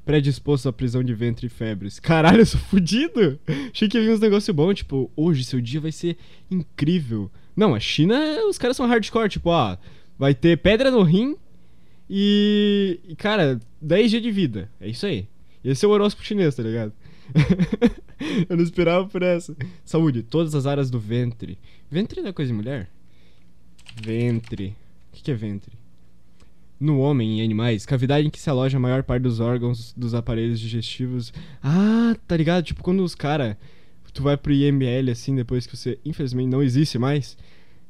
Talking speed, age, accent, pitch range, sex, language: 180 wpm, 20-39, Brazilian, 115-160 Hz, male, Portuguese